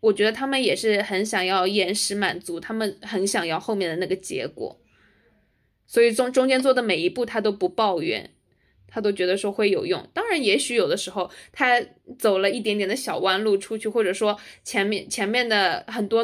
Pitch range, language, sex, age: 195-255 Hz, Chinese, female, 20-39